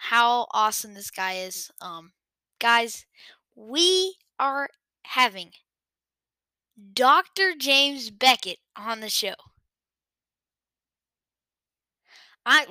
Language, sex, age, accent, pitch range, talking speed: English, female, 10-29, American, 210-255 Hz, 80 wpm